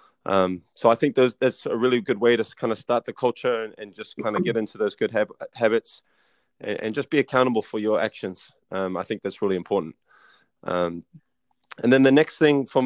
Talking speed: 215 wpm